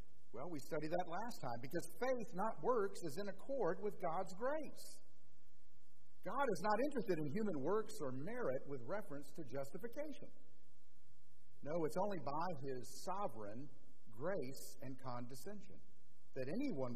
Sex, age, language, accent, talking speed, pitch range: male, 50-69, English, American, 140 wpm, 130-190 Hz